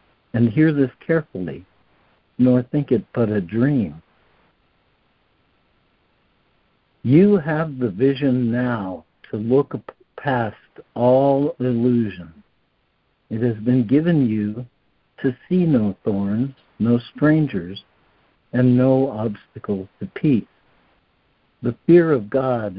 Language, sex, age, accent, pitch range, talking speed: English, male, 60-79, American, 105-140 Hz, 105 wpm